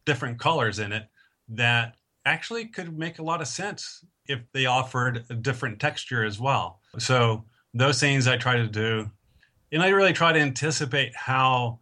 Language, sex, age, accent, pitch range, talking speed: English, male, 40-59, American, 115-135 Hz, 175 wpm